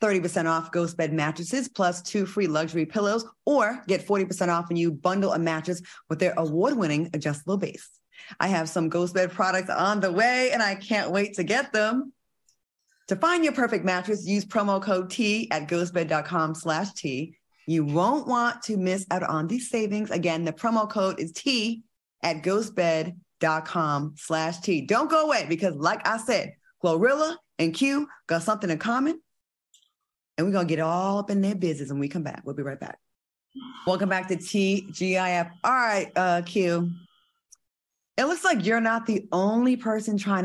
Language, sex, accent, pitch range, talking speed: English, female, American, 165-215 Hz, 175 wpm